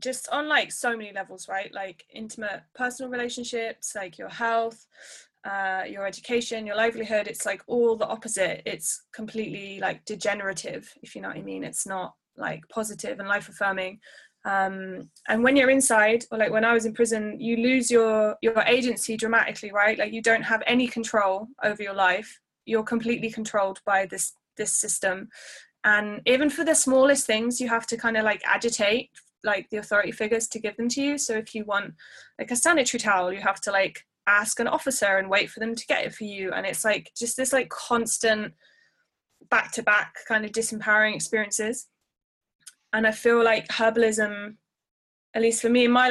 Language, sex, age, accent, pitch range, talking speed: English, female, 10-29, British, 210-240 Hz, 190 wpm